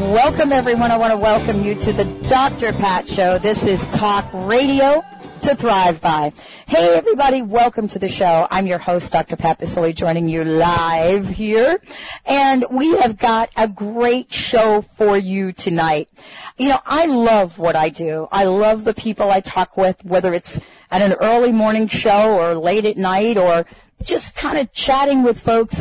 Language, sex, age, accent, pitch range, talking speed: English, female, 40-59, American, 180-230 Hz, 180 wpm